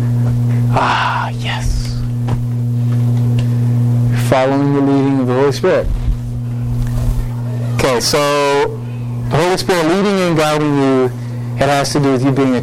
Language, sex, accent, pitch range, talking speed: English, male, American, 120-200 Hz, 125 wpm